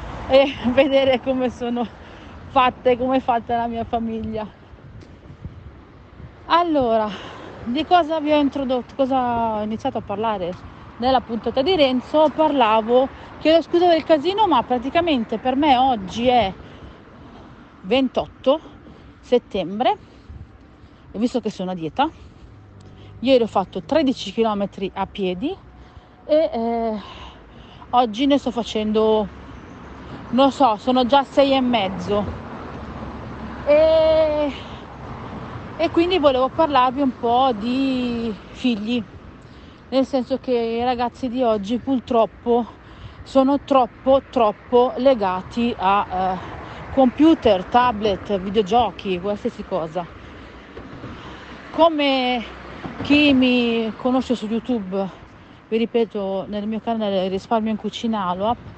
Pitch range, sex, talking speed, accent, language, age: 220-270 Hz, female, 110 wpm, native, Italian, 40-59